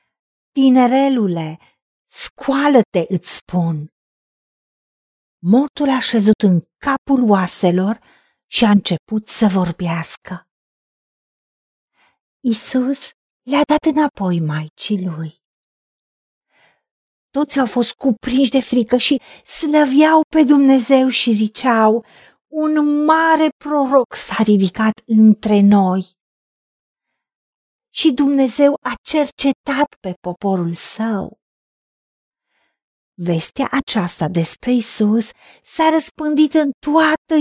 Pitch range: 210-275 Hz